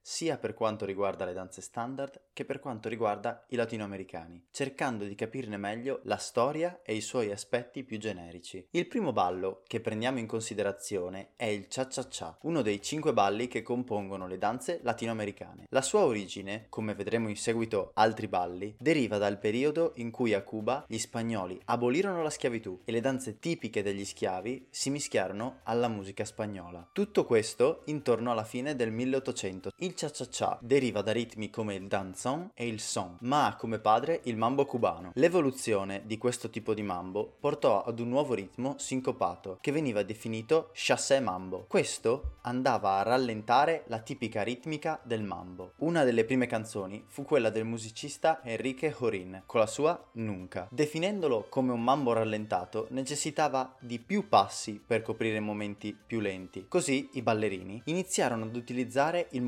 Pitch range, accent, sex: 105-130 Hz, native, male